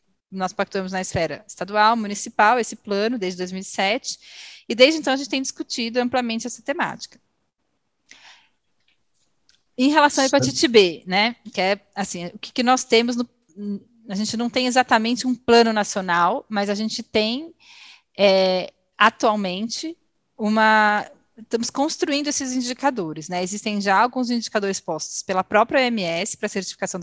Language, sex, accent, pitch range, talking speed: Portuguese, female, Brazilian, 195-240 Hz, 140 wpm